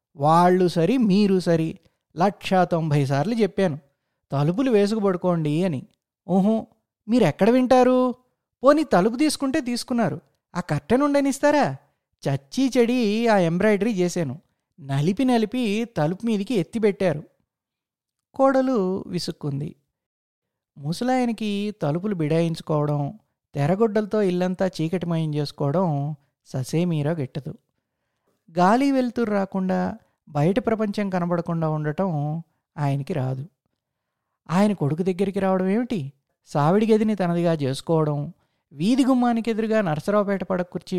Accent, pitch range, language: native, 150-220 Hz, Telugu